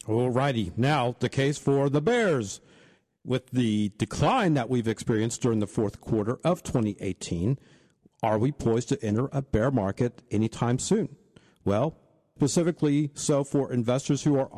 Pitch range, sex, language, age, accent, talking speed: 115-150 Hz, male, English, 50-69, American, 150 wpm